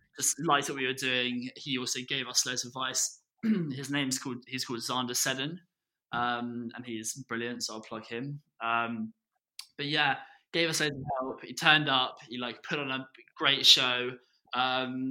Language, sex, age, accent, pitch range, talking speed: English, male, 20-39, British, 120-140 Hz, 185 wpm